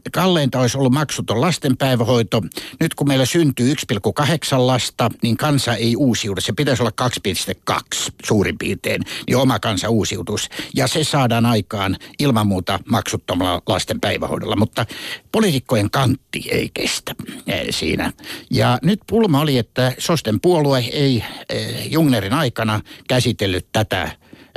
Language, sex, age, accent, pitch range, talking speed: Finnish, male, 60-79, native, 110-145 Hz, 125 wpm